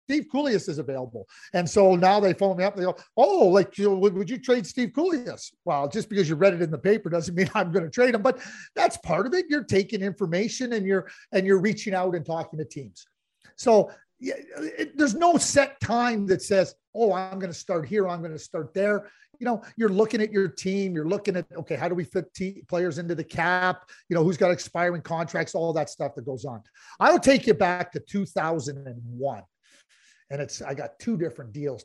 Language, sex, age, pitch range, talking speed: English, male, 40-59, 155-205 Hz, 235 wpm